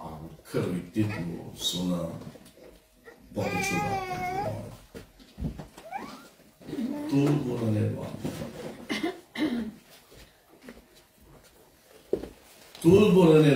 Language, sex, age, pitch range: Romanian, male, 60-79, 110-165 Hz